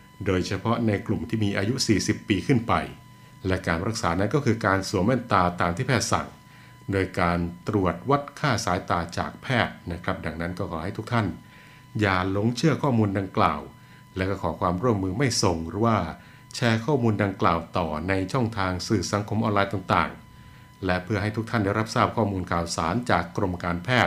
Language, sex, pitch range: Thai, male, 90-115 Hz